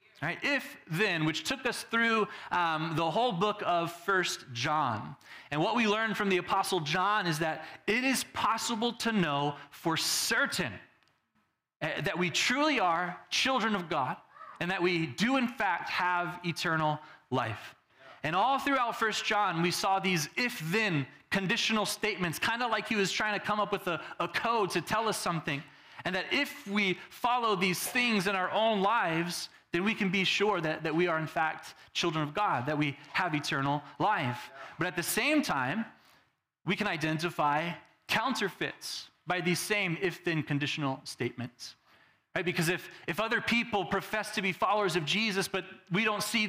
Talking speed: 175 wpm